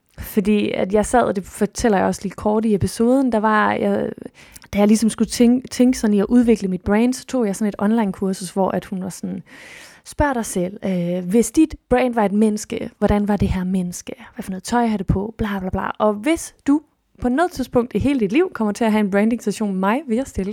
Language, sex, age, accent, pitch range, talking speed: Danish, female, 20-39, native, 200-250 Hz, 255 wpm